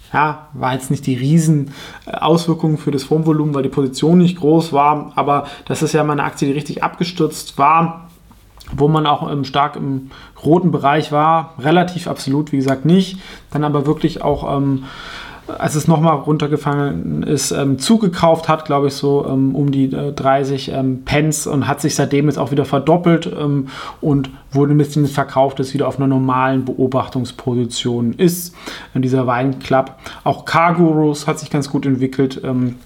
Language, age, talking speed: German, 20-39, 170 wpm